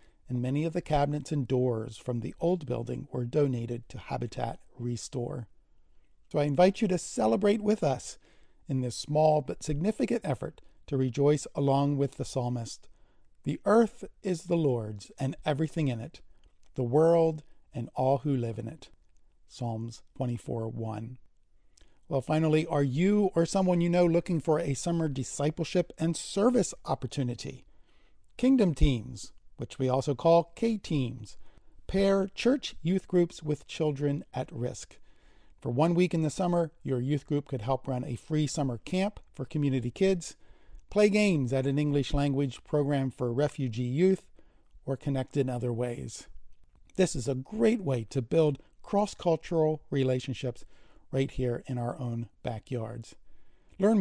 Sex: male